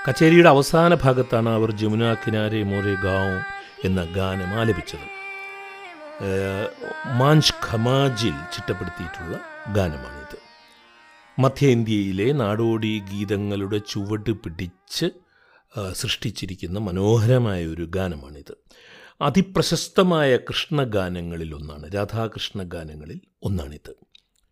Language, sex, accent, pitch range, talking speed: Malayalam, male, native, 95-130 Hz, 70 wpm